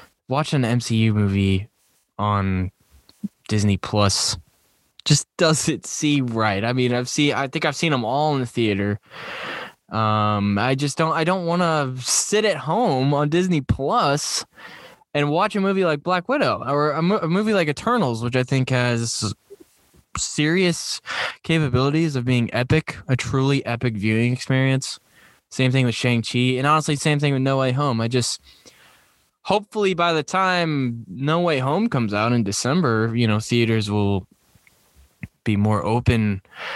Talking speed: 160 wpm